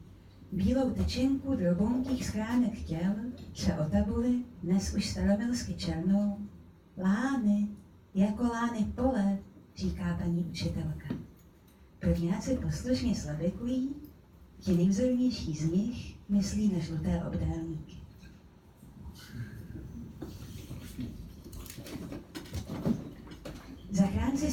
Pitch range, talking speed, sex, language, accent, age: 175-250 Hz, 75 wpm, female, Czech, native, 30-49